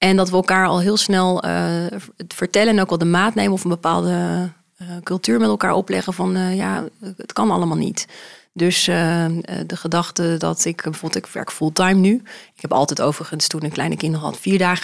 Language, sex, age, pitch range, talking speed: Dutch, female, 30-49, 170-200 Hz, 210 wpm